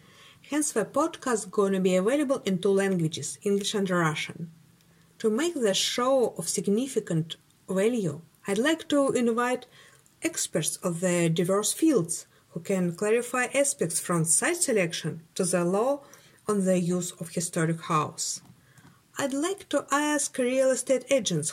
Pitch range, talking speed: 170-240 Hz, 150 wpm